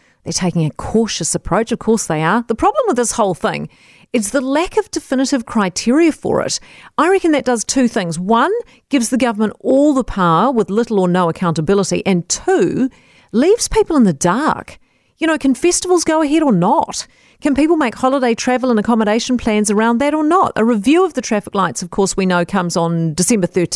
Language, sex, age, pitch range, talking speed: English, female, 40-59, 185-265 Hz, 205 wpm